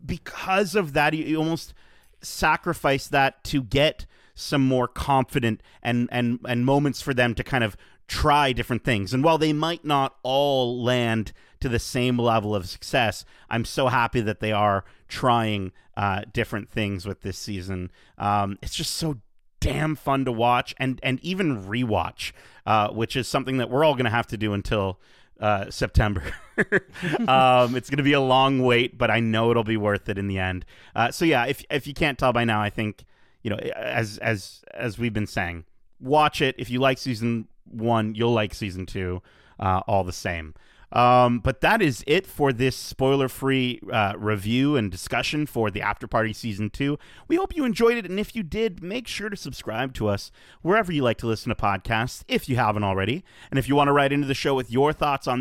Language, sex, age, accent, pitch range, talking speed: English, male, 30-49, American, 105-140 Hz, 200 wpm